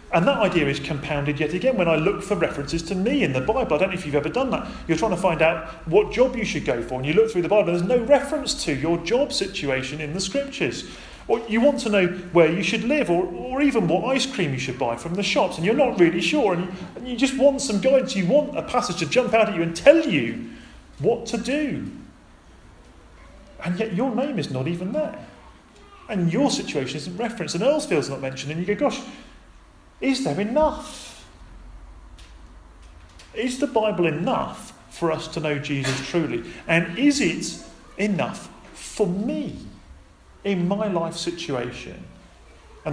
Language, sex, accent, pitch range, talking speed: English, male, British, 135-220 Hz, 205 wpm